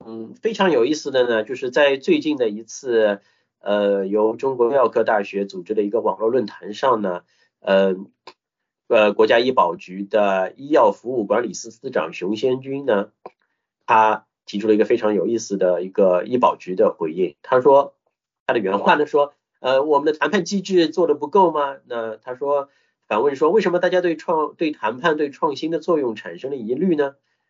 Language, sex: English, male